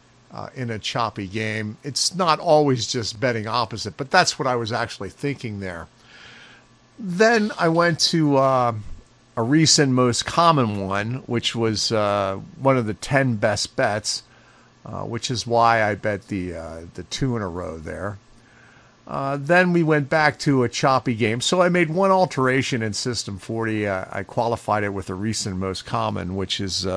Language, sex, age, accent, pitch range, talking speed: English, male, 50-69, American, 115-145 Hz, 180 wpm